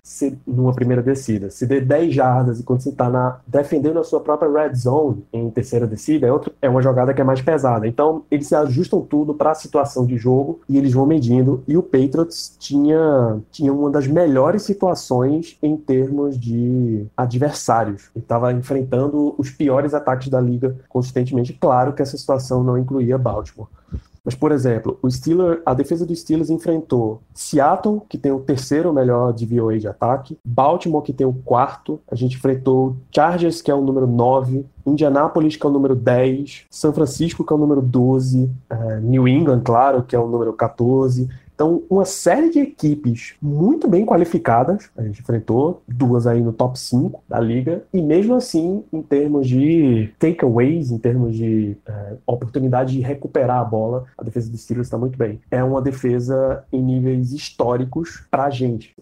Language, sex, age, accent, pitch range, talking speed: Portuguese, male, 20-39, Brazilian, 120-145 Hz, 180 wpm